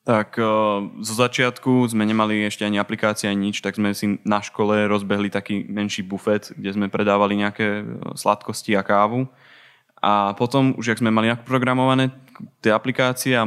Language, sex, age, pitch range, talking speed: Slovak, male, 20-39, 105-115 Hz, 160 wpm